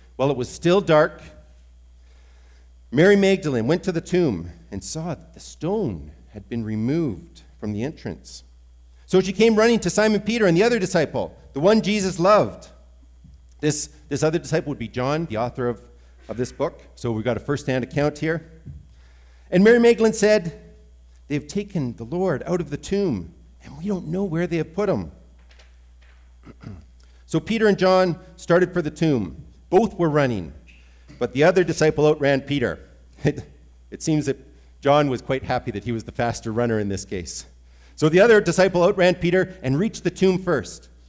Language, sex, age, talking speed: English, male, 50-69, 180 wpm